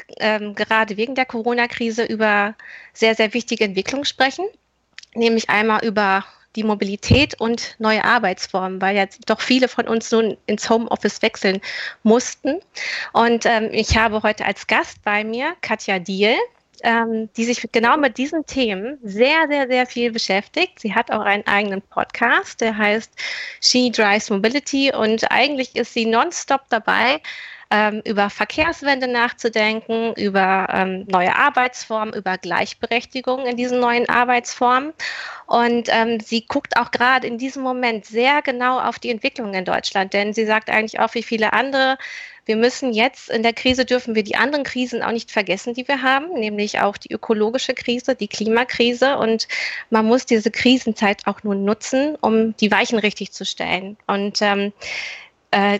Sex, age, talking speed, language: female, 30-49, 160 wpm, German